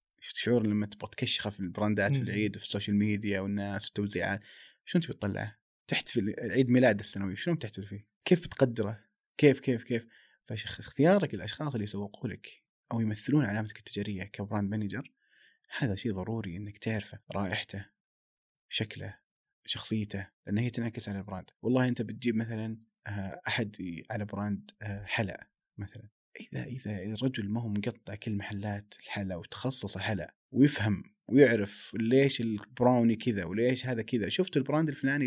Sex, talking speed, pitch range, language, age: male, 140 wpm, 105-125 Hz, Arabic, 30-49